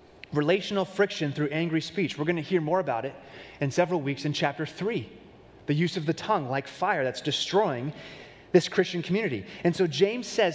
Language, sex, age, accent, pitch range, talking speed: English, male, 30-49, American, 140-185 Hz, 195 wpm